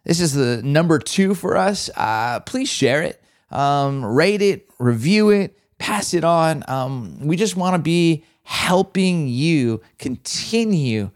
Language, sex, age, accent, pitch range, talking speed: English, male, 30-49, American, 120-160 Hz, 150 wpm